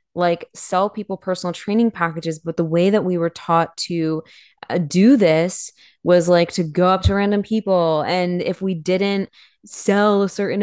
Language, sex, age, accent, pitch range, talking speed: English, female, 20-39, American, 165-200 Hz, 175 wpm